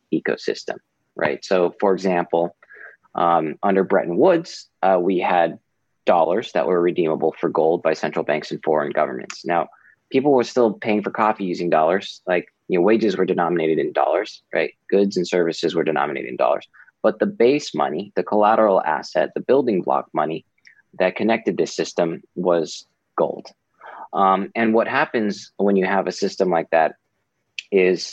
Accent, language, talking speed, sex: American, English, 165 wpm, male